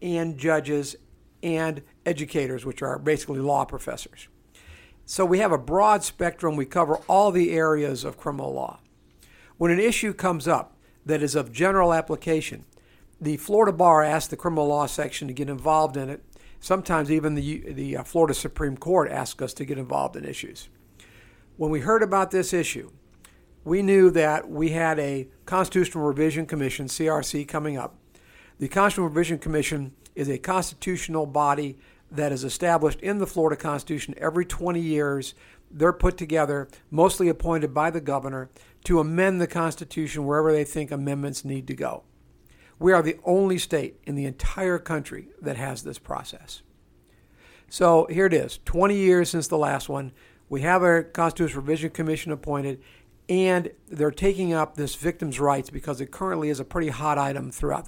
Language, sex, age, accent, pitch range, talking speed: English, male, 50-69, American, 140-170 Hz, 165 wpm